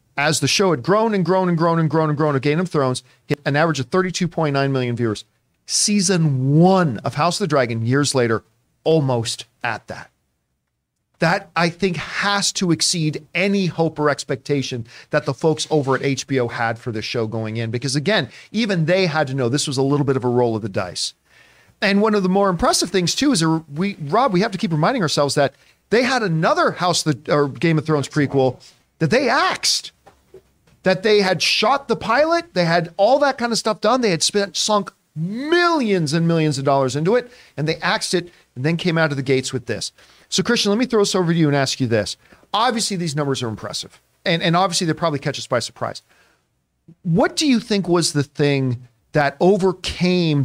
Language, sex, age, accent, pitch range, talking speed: English, male, 40-59, American, 135-185 Hz, 215 wpm